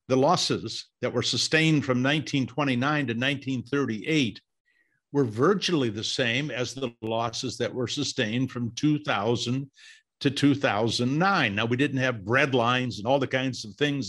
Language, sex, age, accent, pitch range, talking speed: English, male, 50-69, American, 120-155 Hz, 150 wpm